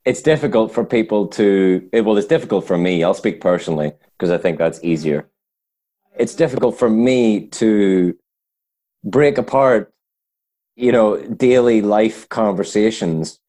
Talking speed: 140 wpm